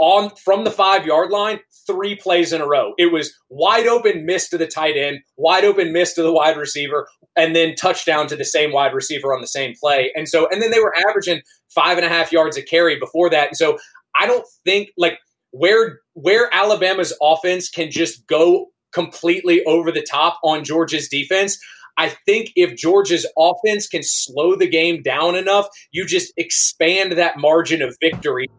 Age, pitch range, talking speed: 20-39, 155-200 Hz, 195 wpm